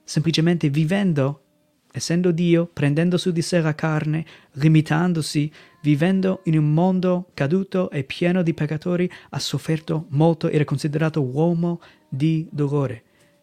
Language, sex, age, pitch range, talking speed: Italian, male, 30-49, 145-170 Hz, 130 wpm